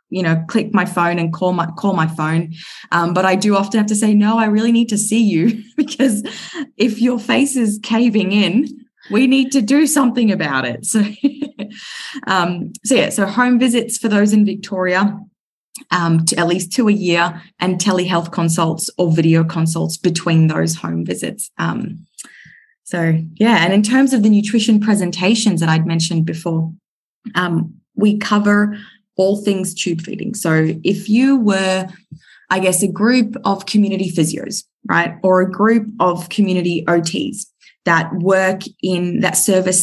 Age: 20-39